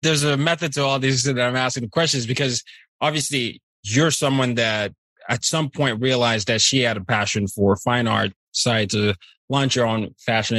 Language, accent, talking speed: English, American, 195 wpm